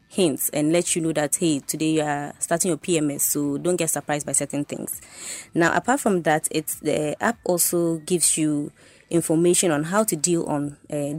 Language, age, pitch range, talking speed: English, 20-39, 150-175 Hz, 200 wpm